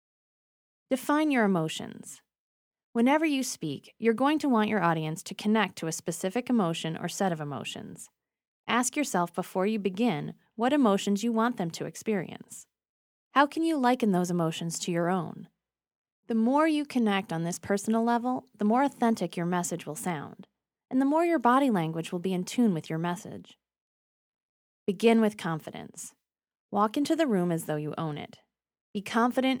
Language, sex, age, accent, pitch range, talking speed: English, female, 30-49, American, 175-245 Hz, 170 wpm